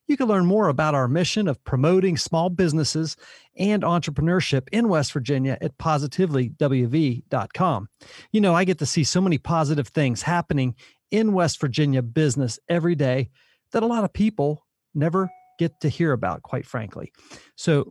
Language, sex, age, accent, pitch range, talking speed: English, male, 40-59, American, 135-180 Hz, 160 wpm